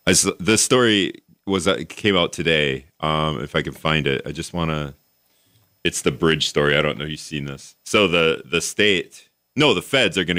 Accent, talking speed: American, 220 wpm